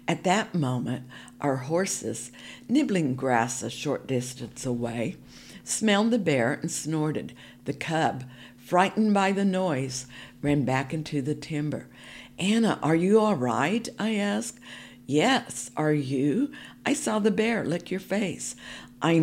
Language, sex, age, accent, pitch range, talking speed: English, female, 60-79, American, 125-185 Hz, 140 wpm